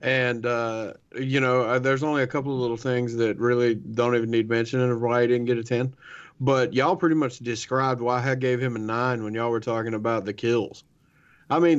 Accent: American